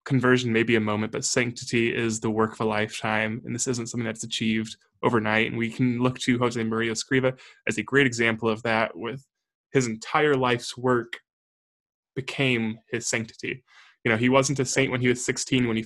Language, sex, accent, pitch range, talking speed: English, male, American, 110-130 Hz, 205 wpm